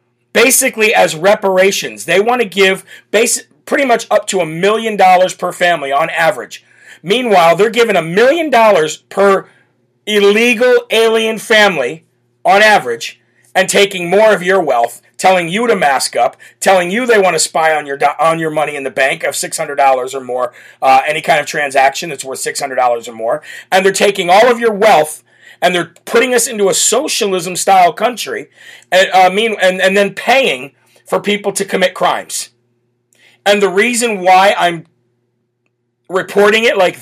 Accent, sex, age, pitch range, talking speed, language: American, male, 40-59, 165-210 Hz, 170 wpm, English